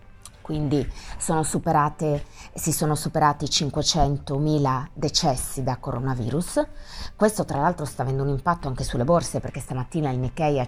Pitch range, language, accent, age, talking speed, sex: 130-175 Hz, Italian, native, 30-49, 140 wpm, female